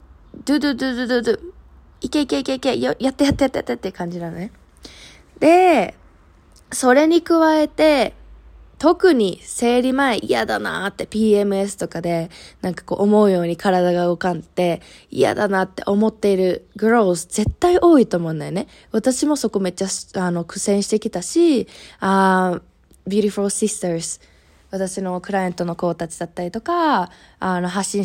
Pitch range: 175-235 Hz